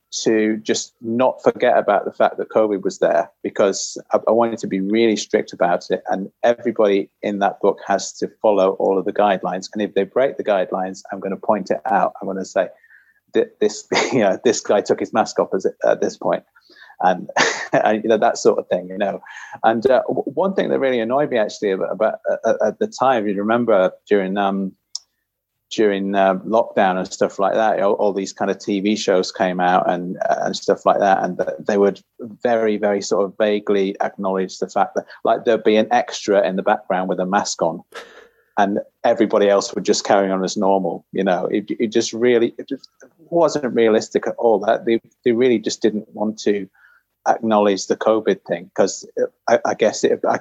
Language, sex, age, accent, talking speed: English, male, 30-49, British, 210 wpm